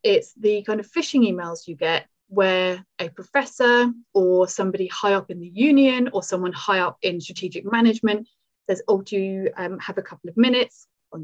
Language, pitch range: English, 175-225 Hz